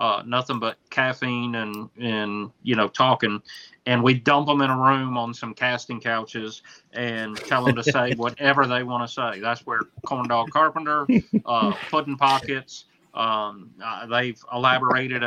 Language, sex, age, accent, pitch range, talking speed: English, male, 30-49, American, 120-135 Hz, 160 wpm